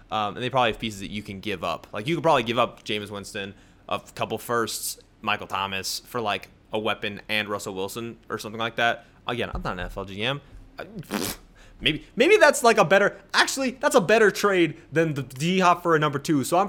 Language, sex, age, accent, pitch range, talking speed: English, male, 20-39, American, 105-145 Hz, 225 wpm